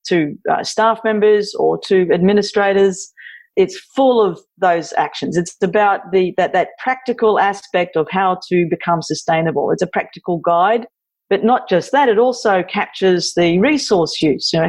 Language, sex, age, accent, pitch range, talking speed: English, female, 40-59, Australian, 170-210 Hz, 165 wpm